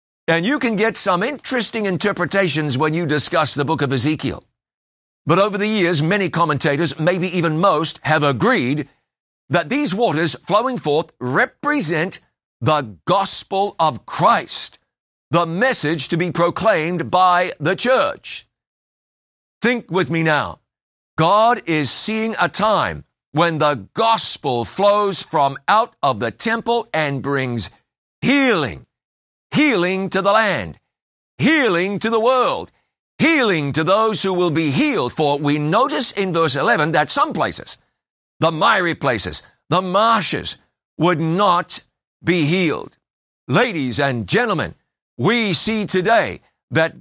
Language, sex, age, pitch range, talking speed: English, male, 50-69, 155-215 Hz, 135 wpm